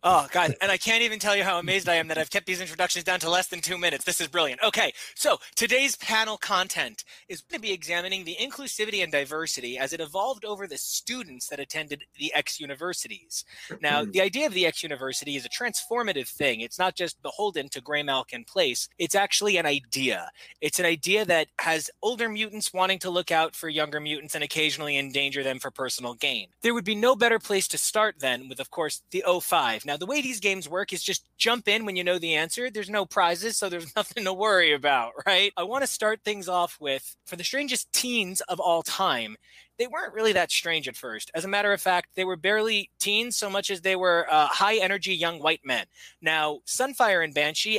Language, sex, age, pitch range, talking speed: English, male, 20-39, 155-210 Hz, 220 wpm